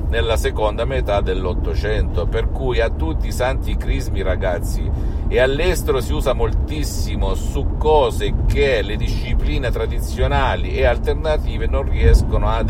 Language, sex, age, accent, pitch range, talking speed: Italian, male, 50-69, native, 75-105 Hz, 130 wpm